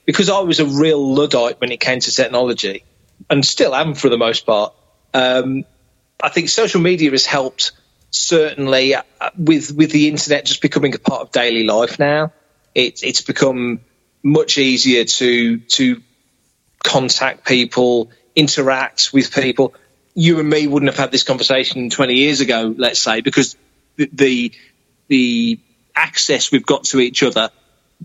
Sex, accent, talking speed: male, British, 160 wpm